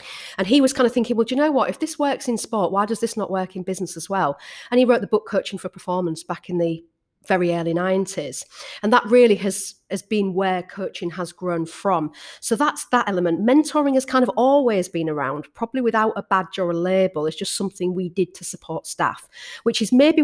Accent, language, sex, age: British, English, female, 40-59